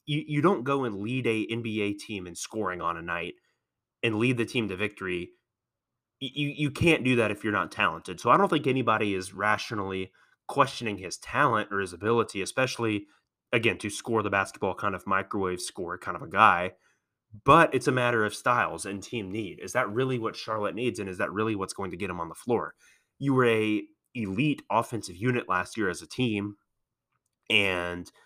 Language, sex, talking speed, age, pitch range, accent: English, male, 200 wpm, 30-49, 100-120 Hz, American